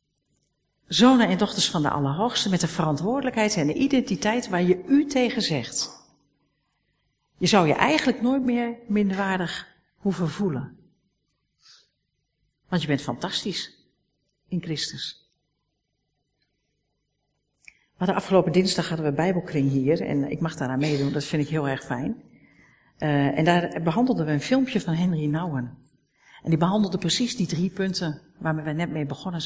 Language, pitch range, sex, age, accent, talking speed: Dutch, 145-190 Hz, female, 50-69, Dutch, 150 wpm